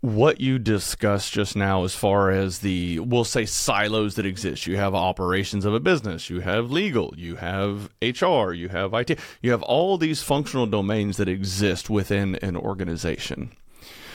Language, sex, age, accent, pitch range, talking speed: English, male, 30-49, American, 100-120 Hz, 170 wpm